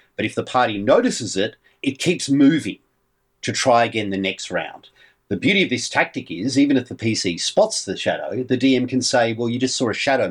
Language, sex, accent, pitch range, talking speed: English, male, Australian, 95-130 Hz, 220 wpm